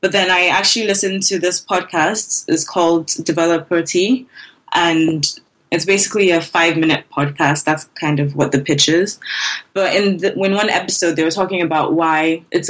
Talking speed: 170 wpm